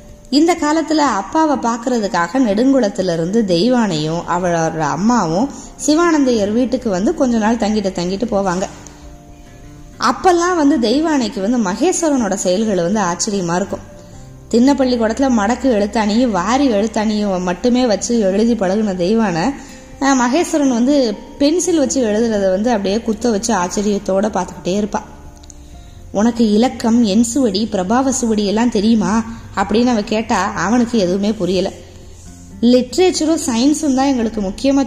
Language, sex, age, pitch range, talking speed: Tamil, female, 20-39, 190-255 Hz, 110 wpm